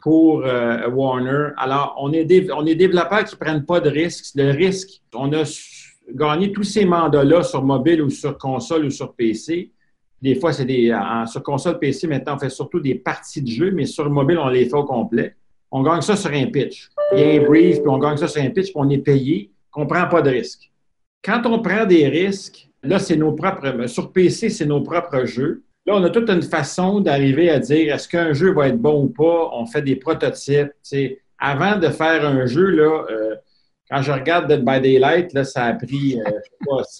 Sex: male